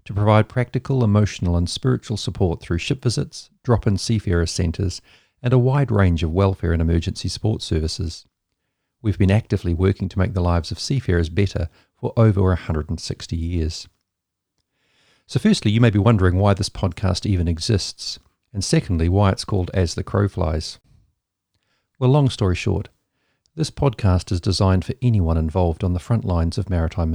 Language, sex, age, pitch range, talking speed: English, male, 50-69, 90-110 Hz, 165 wpm